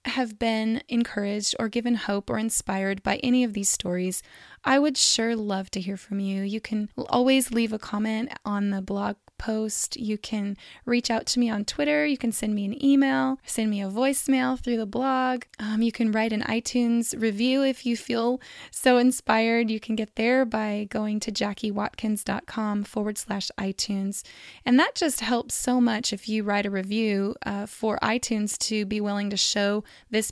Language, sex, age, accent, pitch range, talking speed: English, female, 10-29, American, 205-240 Hz, 190 wpm